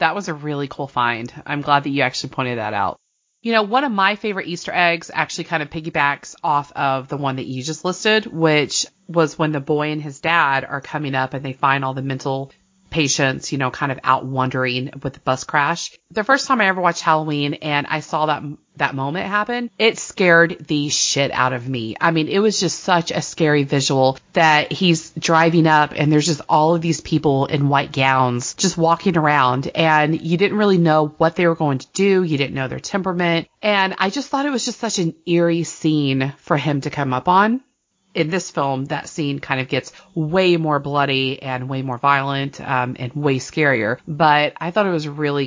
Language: English